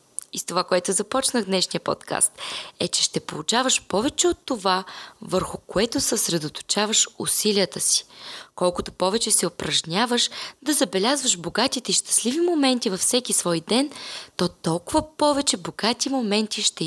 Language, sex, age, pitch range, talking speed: Bulgarian, female, 20-39, 185-260 Hz, 135 wpm